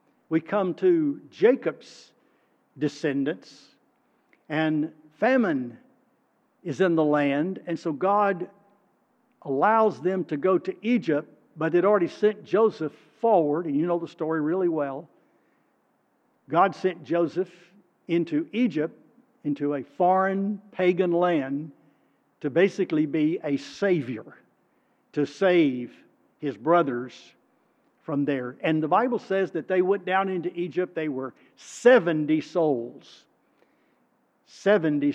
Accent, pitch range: American, 150-205 Hz